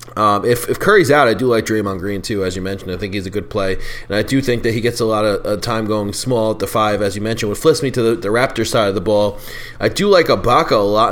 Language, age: English, 30-49